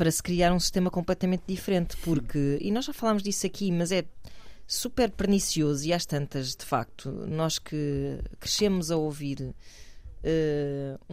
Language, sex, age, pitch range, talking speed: Portuguese, female, 20-39, 145-185 Hz, 155 wpm